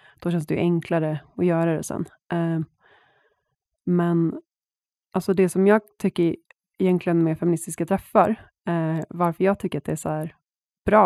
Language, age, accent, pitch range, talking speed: Swedish, 20-39, native, 165-185 Hz, 165 wpm